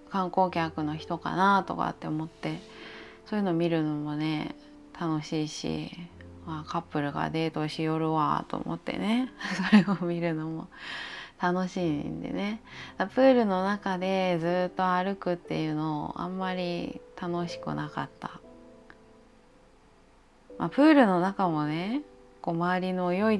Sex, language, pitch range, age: female, Japanese, 155-205 Hz, 20-39